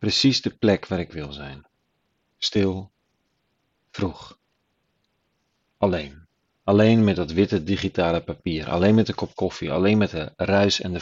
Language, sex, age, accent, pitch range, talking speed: Dutch, male, 40-59, Dutch, 85-100 Hz, 145 wpm